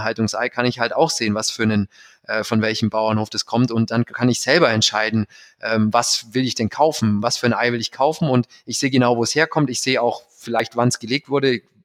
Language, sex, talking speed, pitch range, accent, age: German, male, 255 wpm, 115-135 Hz, German, 30-49